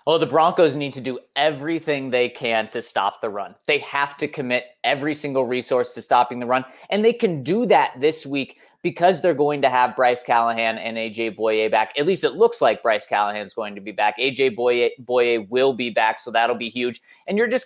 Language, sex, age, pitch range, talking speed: English, male, 20-39, 120-175 Hz, 230 wpm